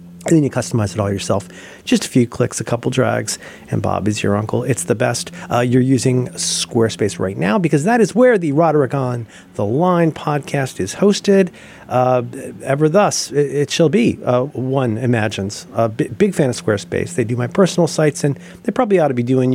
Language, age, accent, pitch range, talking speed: English, 40-59, American, 125-190 Hz, 210 wpm